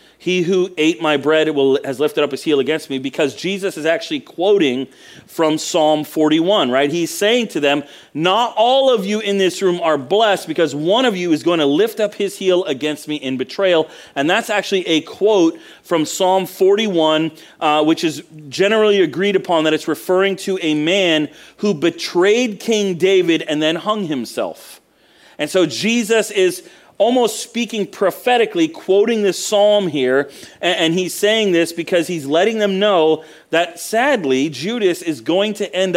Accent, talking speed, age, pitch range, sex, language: American, 175 wpm, 40-59, 155-200 Hz, male, English